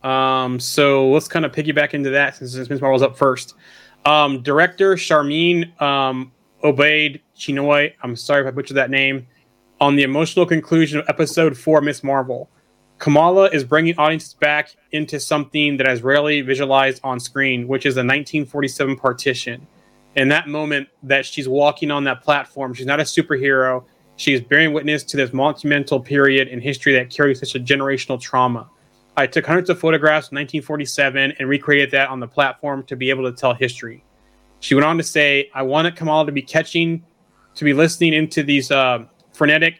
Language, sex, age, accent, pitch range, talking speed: English, male, 30-49, American, 135-150 Hz, 180 wpm